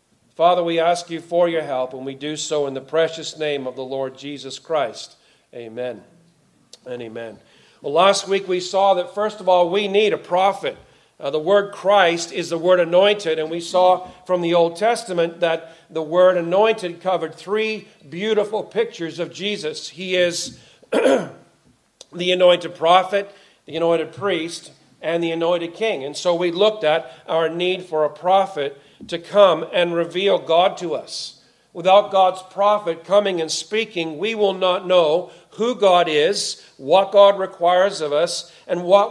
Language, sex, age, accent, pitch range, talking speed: English, male, 40-59, American, 165-200 Hz, 170 wpm